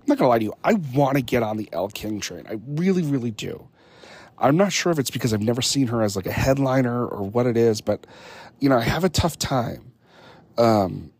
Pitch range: 110-145 Hz